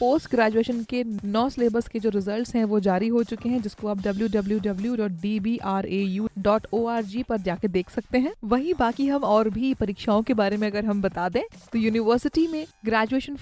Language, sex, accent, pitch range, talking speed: Hindi, female, native, 215-255 Hz, 175 wpm